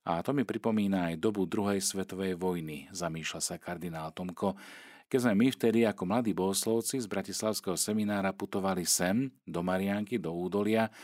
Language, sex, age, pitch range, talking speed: Slovak, male, 40-59, 85-110 Hz, 160 wpm